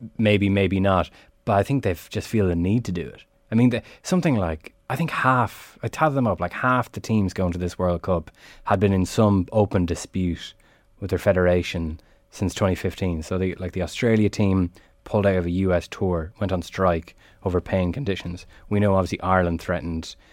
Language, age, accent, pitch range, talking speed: English, 20-39, Irish, 90-105 Hz, 205 wpm